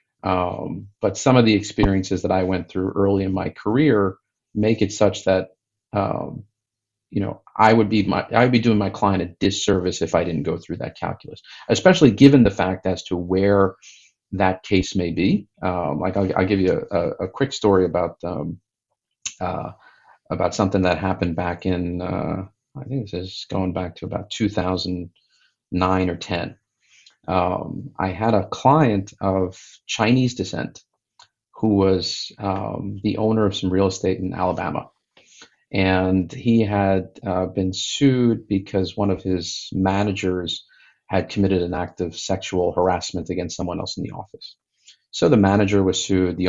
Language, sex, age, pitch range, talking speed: English, male, 40-59, 90-105 Hz, 170 wpm